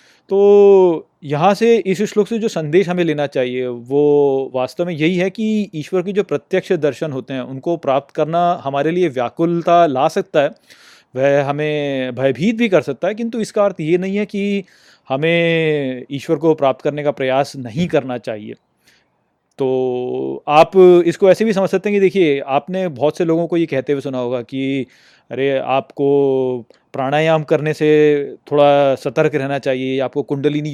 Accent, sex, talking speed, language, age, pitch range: native, male, 175 wpm, Hindi, 30-49, 135-180 Hz